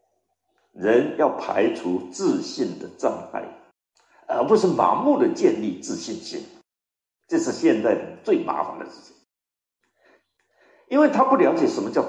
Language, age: Chinese, 60-79